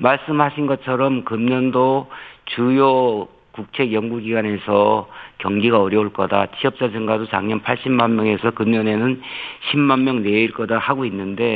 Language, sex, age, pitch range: Korean, male, 50-69, 110-135 Hz